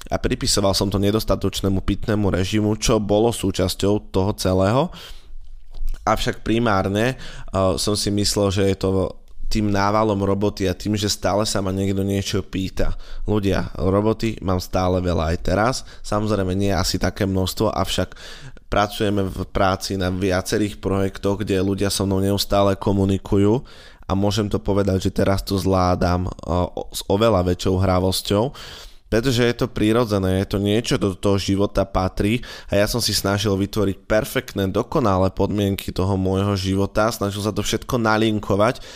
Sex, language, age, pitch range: male, Slovak, 20-39, 95-105 Hz